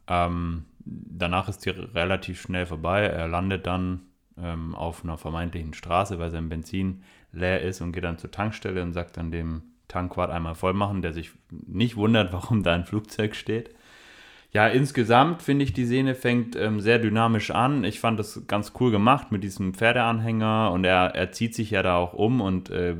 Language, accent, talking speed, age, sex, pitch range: German, German, 190 wpm, 30-49, male, 90-115 Hz